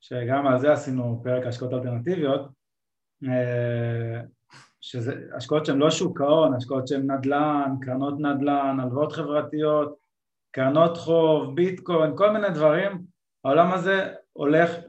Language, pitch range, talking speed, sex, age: Hebrew, 130-170 Hz, 115 wpm, male, 20-39